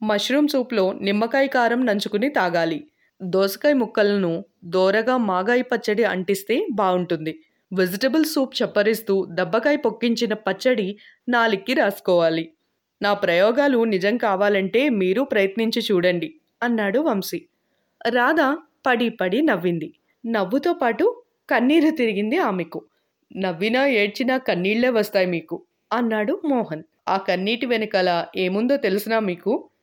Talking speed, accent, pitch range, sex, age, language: 105 wpm, native, 190-260 Hz, female, 20-39, Telugu